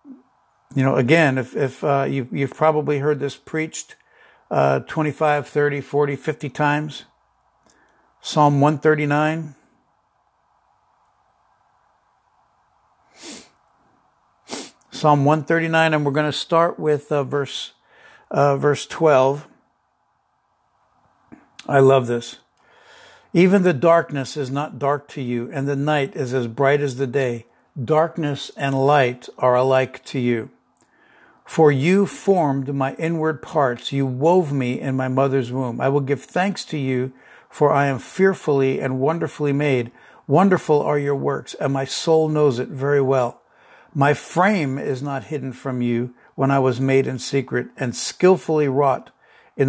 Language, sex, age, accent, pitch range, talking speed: English, male, 60-79, American, 135-155 Hz, 140 wpm